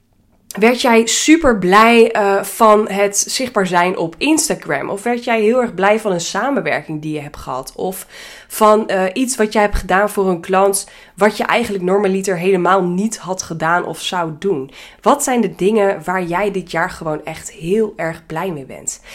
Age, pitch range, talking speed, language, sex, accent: 20-39, 175-215 Hz, 190 wpm, Dutch, female, Dutch